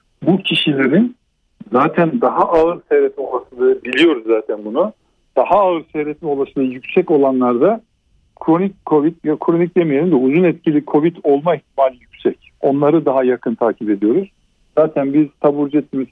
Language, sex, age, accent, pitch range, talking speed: Turkish, male, 50-69, native, 125-155 Hz, 135 wpm